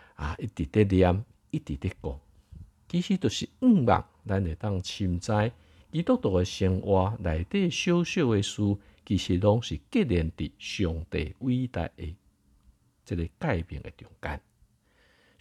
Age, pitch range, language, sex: 50-69, 80-105 Hz, Chinese, male